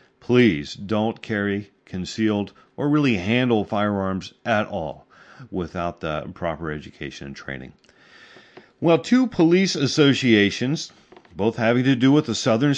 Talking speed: 125 wpm